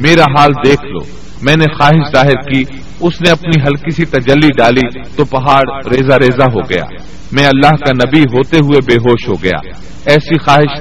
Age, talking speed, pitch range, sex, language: 40-59, 190 wpm, 130-155 Hz, male, Urdu